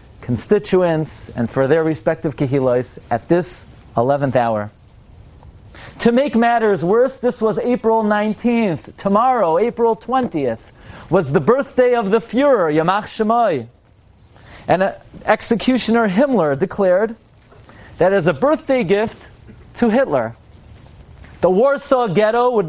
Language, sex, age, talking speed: English, male, 30-49, 115 wpm